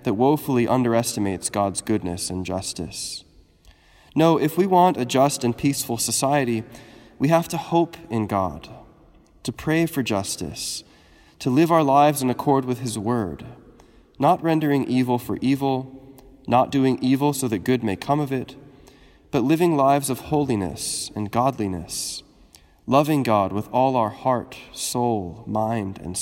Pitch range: 100-135 Hz